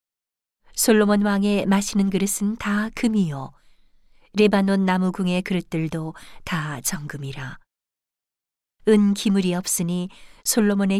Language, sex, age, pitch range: Korean, female, 50-69, 180-210 Hz